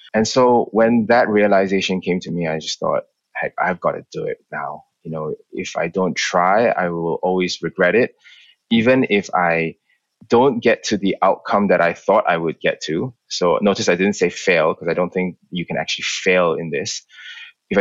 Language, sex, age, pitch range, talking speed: English, male, 20-39, 90-110 Hz, 205 wpm